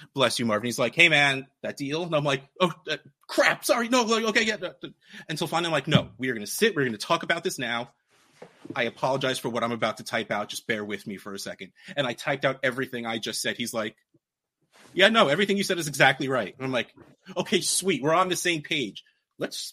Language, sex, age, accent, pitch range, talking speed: English, male, 30-49, American, 125-170 Hz, 250 wpm